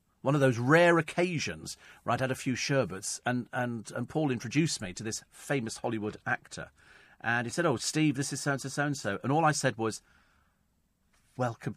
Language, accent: English, British